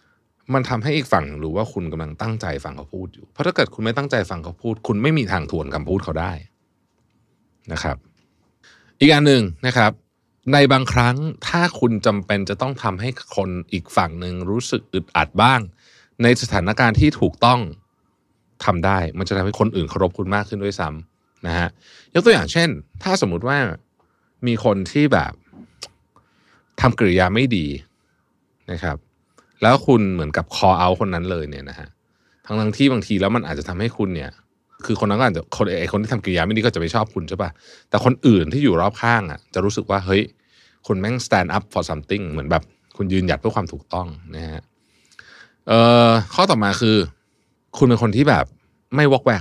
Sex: male